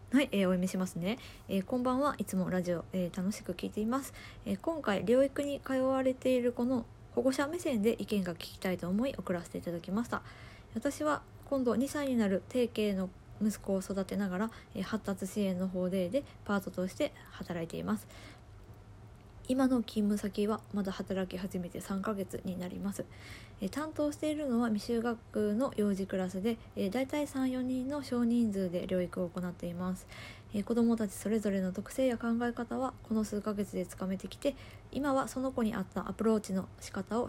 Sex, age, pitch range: female, 20-39, 185-240 Hz